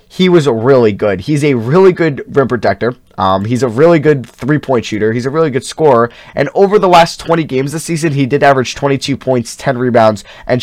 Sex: male